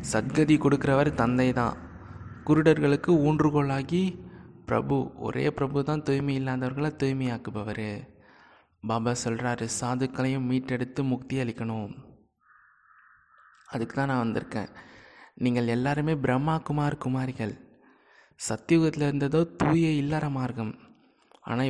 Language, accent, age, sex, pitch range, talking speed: Tamil, native, 20-39, male, 115-145 Hz, 95 wpm